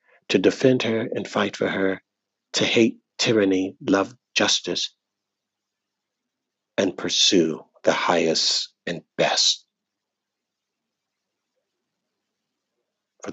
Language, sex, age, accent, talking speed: English, male, 60-79, American, 85 wpm